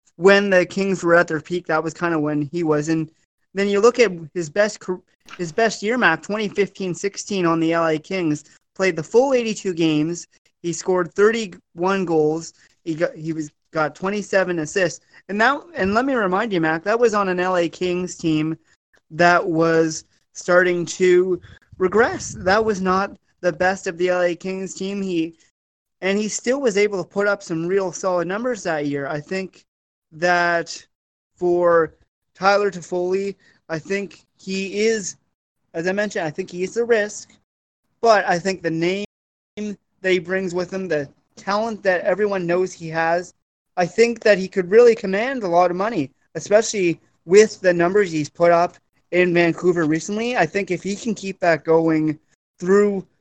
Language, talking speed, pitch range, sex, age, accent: English, 175 wpm, 165-200 Hz, male, 30-49, American